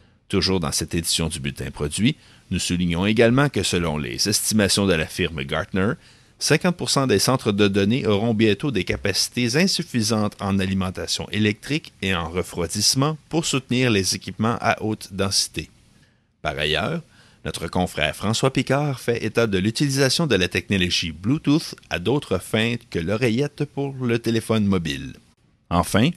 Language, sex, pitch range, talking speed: French, male, 90-120 Hz, 150 wpm